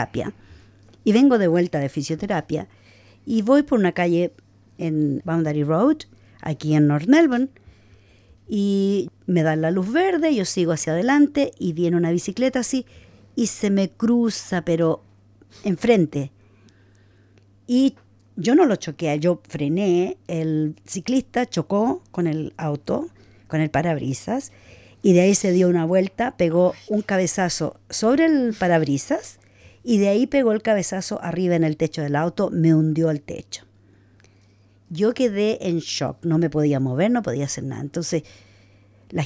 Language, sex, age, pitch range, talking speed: English, female, 50-69, 145-220 Hz, 150 wpm